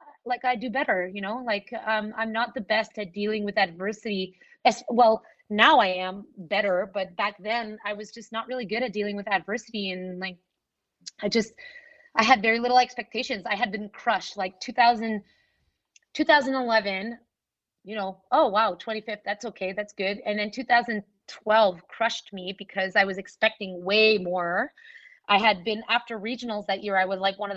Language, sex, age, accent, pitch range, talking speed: English, female, 20-39, American, 195-230 Hz, 180 wpm